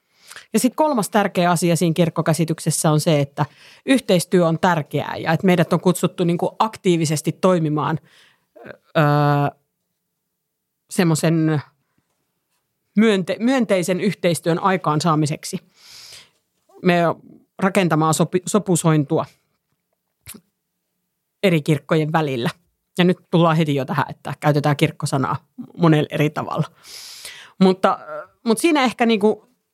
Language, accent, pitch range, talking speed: Finnish, native, 155-190 Hz, 105 wpm